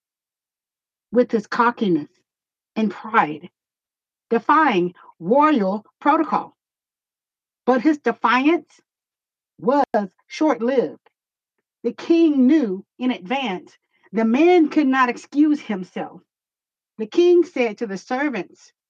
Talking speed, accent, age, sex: 95 wpm, American, 50-69, female